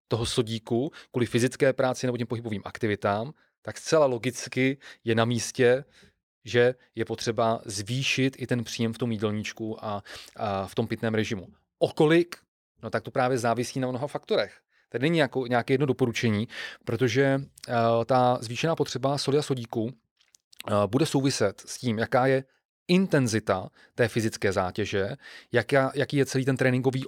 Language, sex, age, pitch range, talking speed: Czech, male, 30-49, 115-130 Hz, 155 wpm